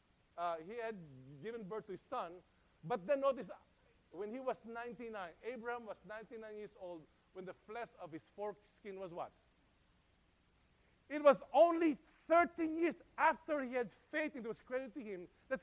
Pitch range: 185-300 Hz